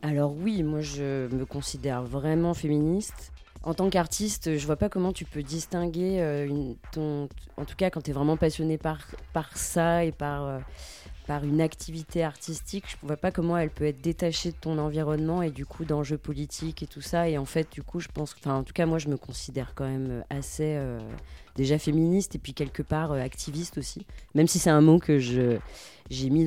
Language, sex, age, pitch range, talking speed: French, female, 20-39, 130-160 Hz, 220 wpm